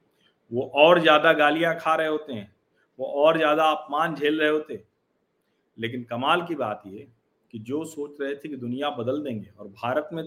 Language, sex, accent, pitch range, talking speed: Hindi, male, native, 125-170 Hz, 185 wpm